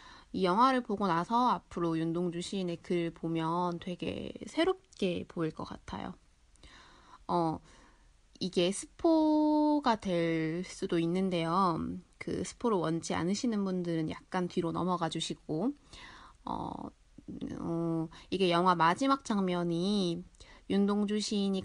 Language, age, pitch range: Korean, 20-39, 170-235 Hz